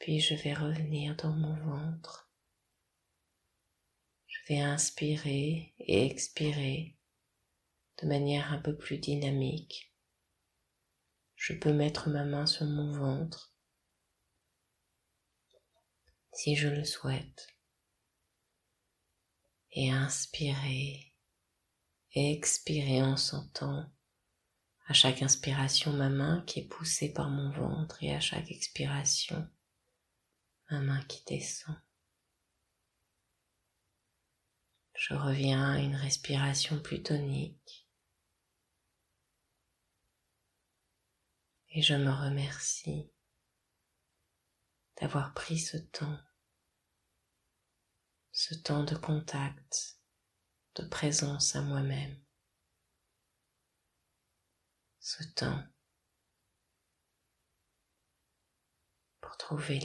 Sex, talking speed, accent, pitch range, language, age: female, 80 wpm, French, 115-150 Hz, French, 30-49